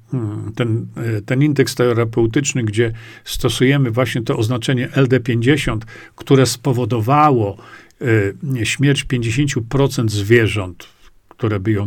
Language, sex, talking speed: Polish, male, 90 wpm